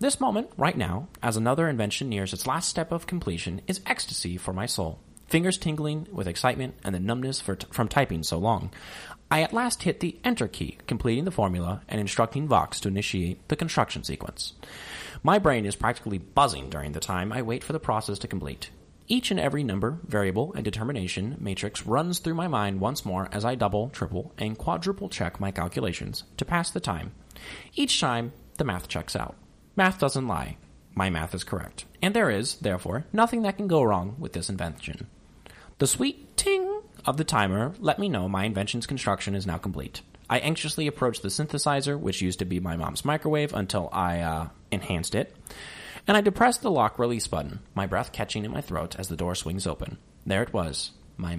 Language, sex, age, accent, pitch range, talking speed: English, male, 30-49, American, 95-150 Hz, 195 wpm